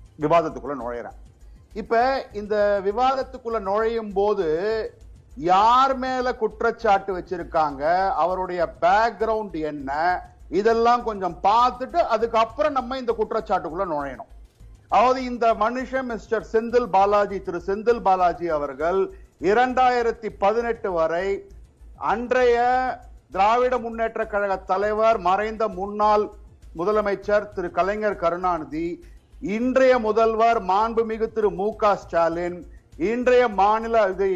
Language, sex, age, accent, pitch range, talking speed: Tamil, male, 50-69, native, 190-235 Hz, 95 wpm